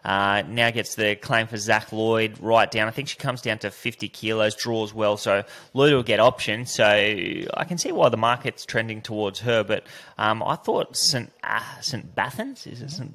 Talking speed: 210 wpm